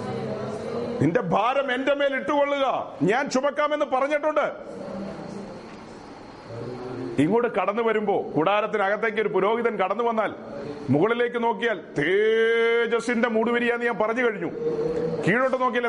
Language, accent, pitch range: Malayalam, native, 205-245 Hz